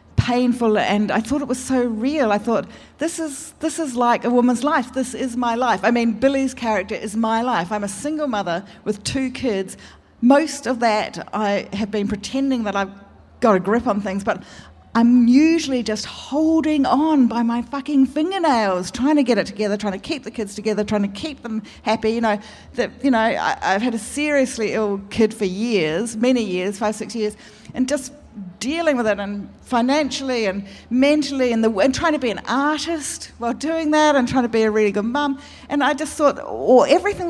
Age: 40-59